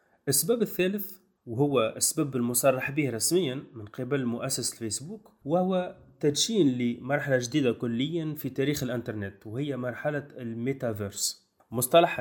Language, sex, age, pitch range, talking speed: Arabic, male, 30-49, 125-160 Hz, 115 wpm